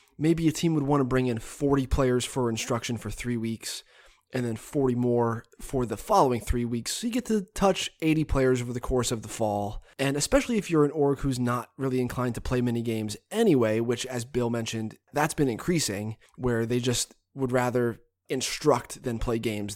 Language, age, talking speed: English, 20-39, 205 wpm